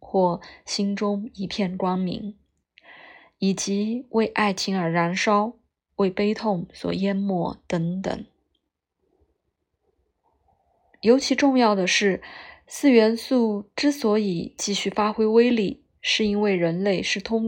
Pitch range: 180-225 Hz